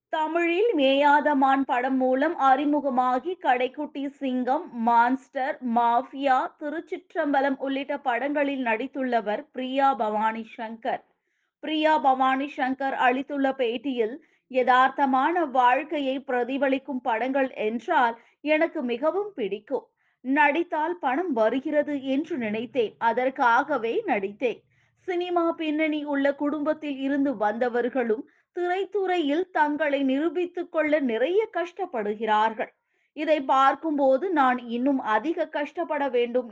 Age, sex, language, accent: 20-39, female, Tamil, native